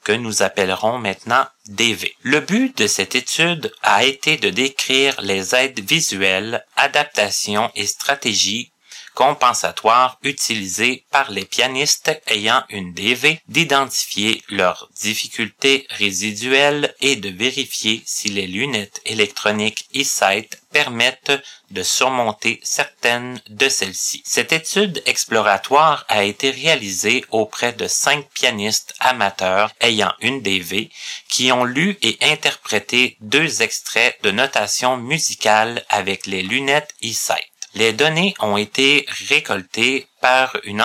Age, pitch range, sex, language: 30-49, 105-145 Hz, male, French